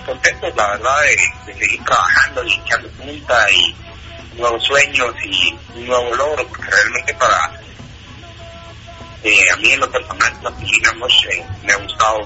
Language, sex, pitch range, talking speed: Spanish, male, 95-115 Hz, 145 wpm